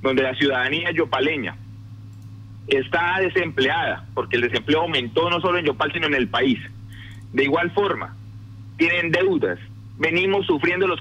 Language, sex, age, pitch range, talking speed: Spanish, male, 30-49, 105-175 Hz, 140 wpm